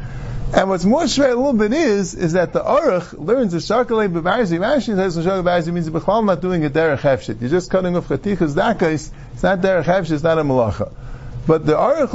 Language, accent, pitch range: English, American, 140-225 Hz